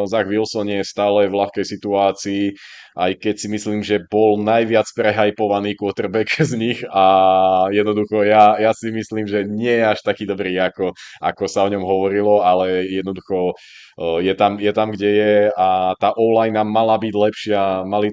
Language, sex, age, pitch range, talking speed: Czech, male, 20-39, 95-105 Hz, 165 wpm